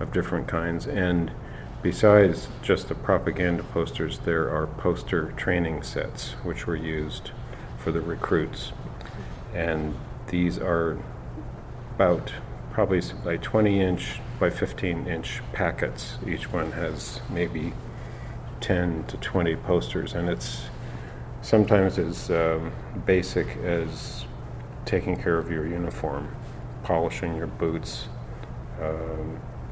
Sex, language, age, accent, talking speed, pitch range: male, English, 50-69, American, 115 wpm, 80-110 Hz